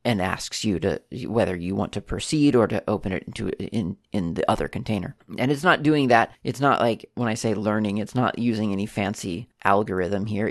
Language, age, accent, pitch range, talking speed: English, 30-49, American, 105-125 Hz, 215 wpm